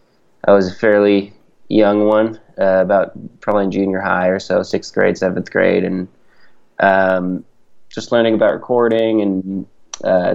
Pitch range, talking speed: 95-110 Hz, 150 wpm